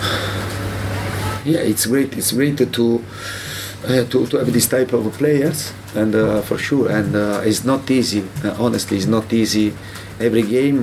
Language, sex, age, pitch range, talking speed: English, male, 30-49, 100-120 Hz, 165 wpm